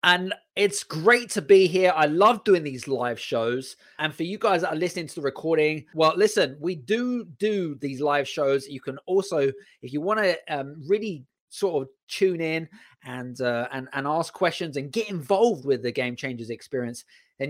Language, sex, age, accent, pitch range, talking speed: English, male, 30-49, British, 135-185 Hz, 200 wpm